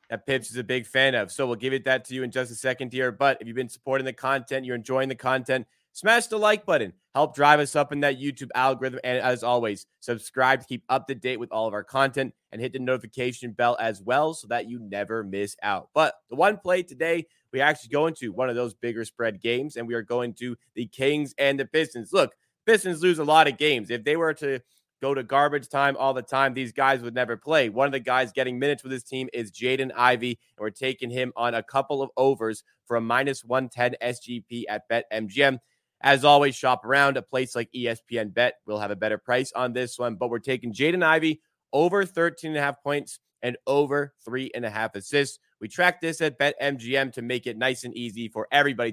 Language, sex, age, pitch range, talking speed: English, male, 20-39, 120-140 Hz, 240 wpm